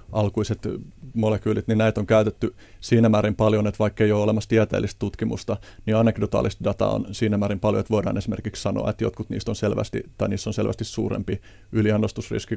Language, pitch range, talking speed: Finnish, 105-115 Hz, 180 wpm